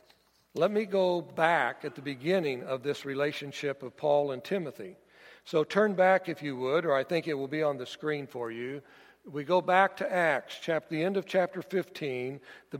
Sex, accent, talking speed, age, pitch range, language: male, American, 195 wpm, 60-79, 150-185 Hz, English